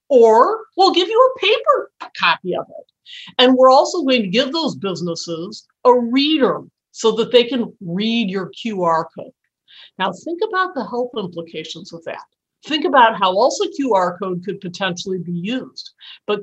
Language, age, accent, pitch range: English, 50-69, American, 180-265 Hz